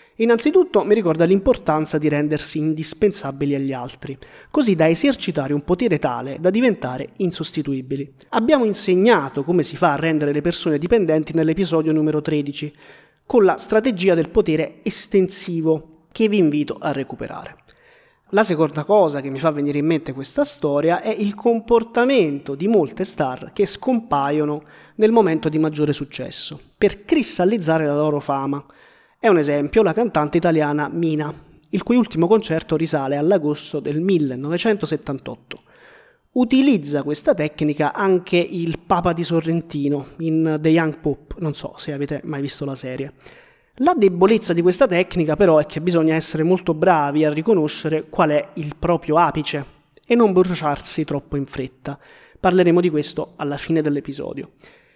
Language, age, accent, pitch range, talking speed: Italian, 30-49, native, 150-195 Hz, 150 wpm